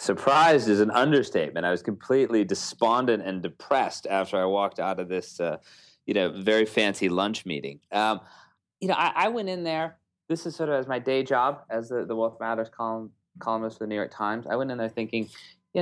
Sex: male